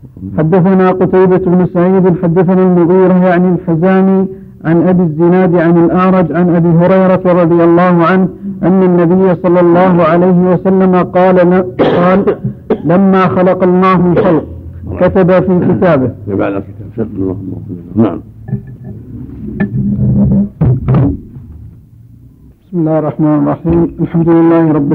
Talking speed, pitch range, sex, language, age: 100 wpm, 165-185 Hz, male, Arabic, 50-69